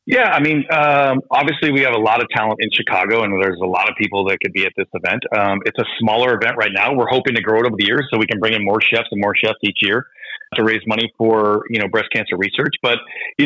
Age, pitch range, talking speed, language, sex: 30-49, 115-140 Hz, 280 wpm, English, male